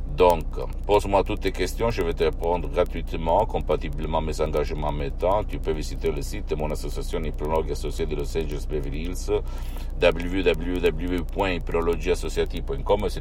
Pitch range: 75-95 Hz